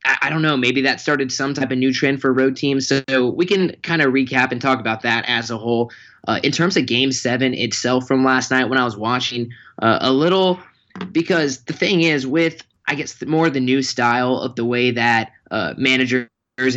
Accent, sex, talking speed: American, male, 220 wpm